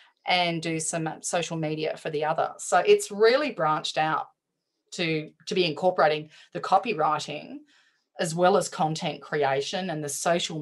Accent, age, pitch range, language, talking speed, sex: Australian, 30-49, 145-185 Hz, English, 155 wpm, female